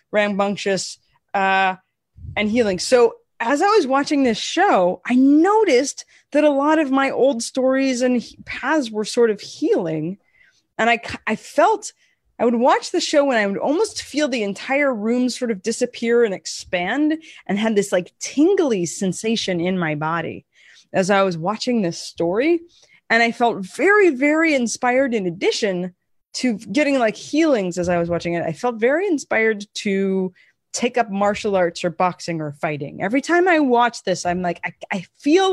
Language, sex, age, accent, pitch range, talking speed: English, female, 20-39, American, 185-265 Hz, 175 wpm